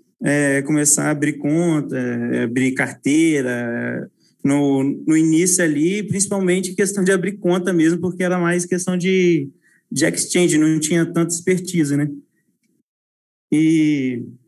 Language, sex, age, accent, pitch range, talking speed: Portuguese, male, 20-39, Brazilian, 145-190 Hz, 135 wpm